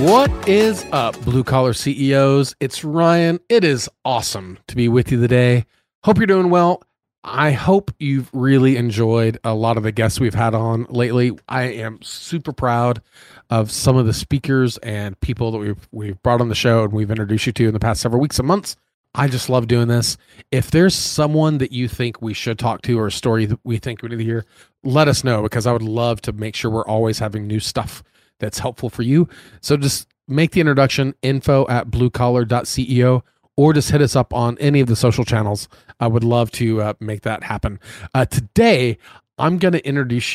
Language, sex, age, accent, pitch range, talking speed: English, male, 30-49, American, 115-135 Hz, 210 wpm